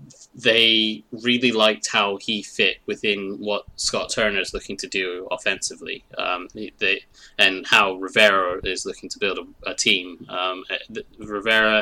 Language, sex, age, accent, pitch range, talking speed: English, male, 20-39, British, 95-110 Hz, 145 wpm